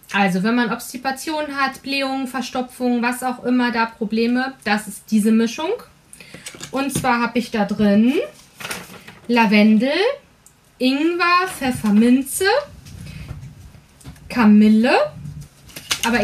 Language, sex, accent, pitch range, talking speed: German, female, German, 210-275 Hz, 100 wpm